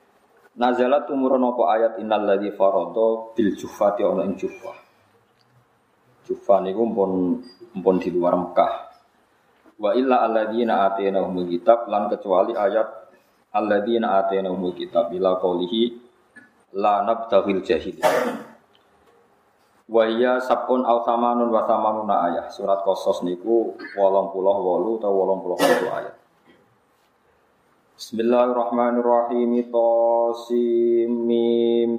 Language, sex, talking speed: Indonesian, male, 100 wpm